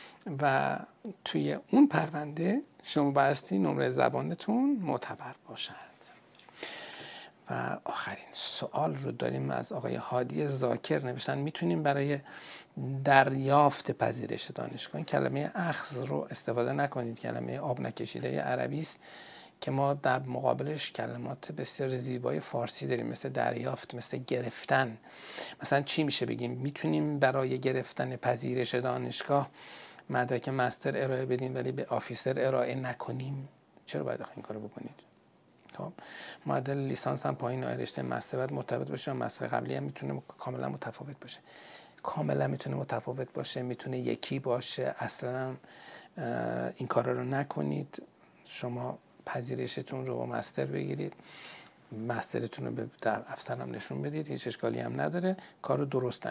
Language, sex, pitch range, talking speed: Persian, male, 95-140 Hz, 125 wpm